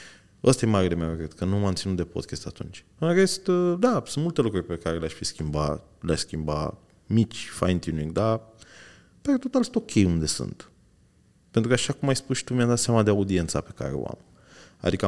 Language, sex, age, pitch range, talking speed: Romanian, male, 20-39, 85-115 Hz, 205 wpm